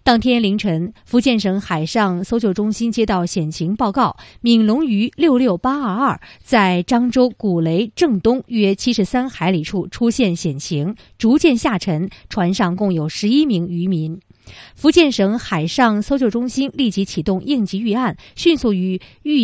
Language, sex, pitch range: Chinese, female, 185-250 Hz